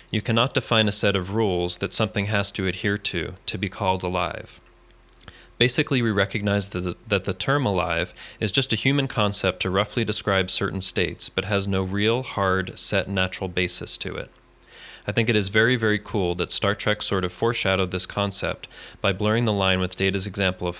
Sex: male